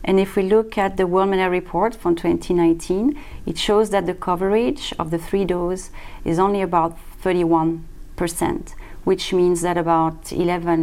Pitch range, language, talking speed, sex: 170-200 Hz, English, 160 wpm, female